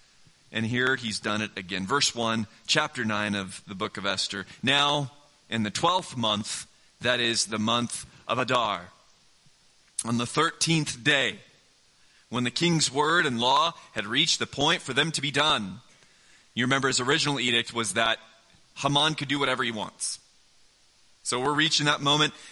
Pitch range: 125-180 Hz